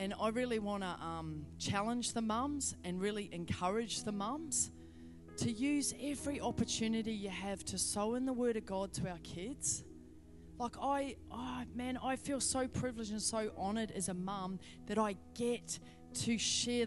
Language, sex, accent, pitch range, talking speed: English, female, Australian, 185-245 Hz, 175 wpm